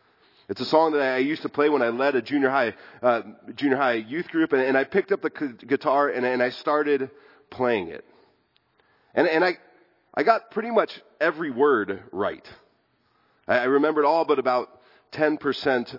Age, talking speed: 30-49, 190 wpm